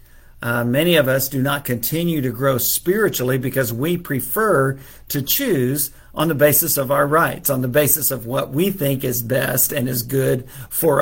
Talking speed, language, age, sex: 185 wpm, English, 50-69, male